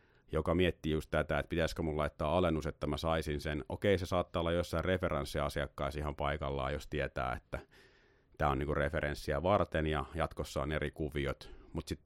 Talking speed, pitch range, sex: 180 wpm, 75-85 Hz, male